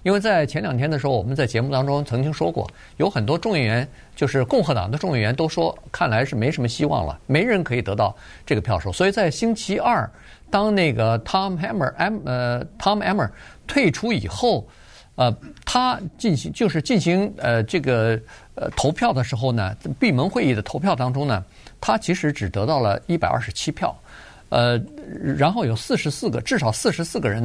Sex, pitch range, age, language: male, 115-160 Hz, 50-69, Chinese